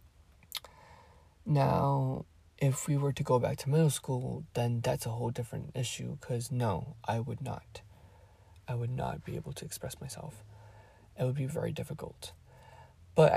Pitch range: 105-150 Hz